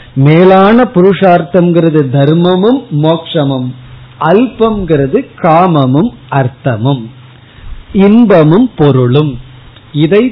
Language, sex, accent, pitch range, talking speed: Tamil, male, native, 130-170 Hz, 60 wpm